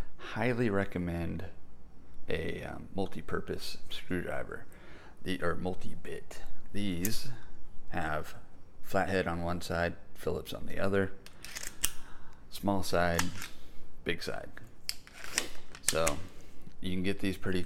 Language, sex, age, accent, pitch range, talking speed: English, male, 30-49, American, 85-95 Hz, 100 wpm